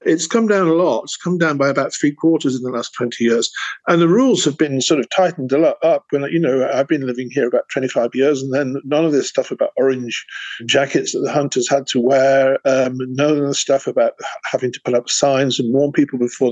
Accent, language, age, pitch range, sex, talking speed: British, English, 50-69, 130-160 Hz, male, 245 wpm